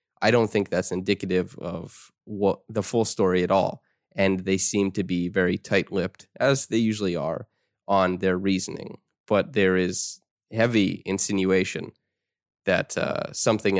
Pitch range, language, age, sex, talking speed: 95-110 Hz, English, 20-39, male, 150 wpm